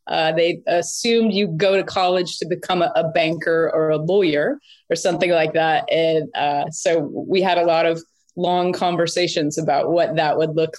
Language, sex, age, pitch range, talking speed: English, female, 30-49, 165-195 Hz, 190 wpm